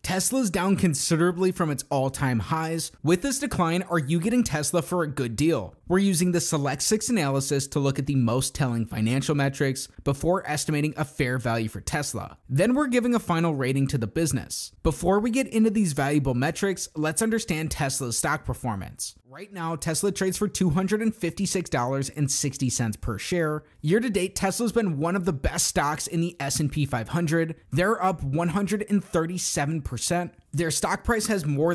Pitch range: 140-185 Hz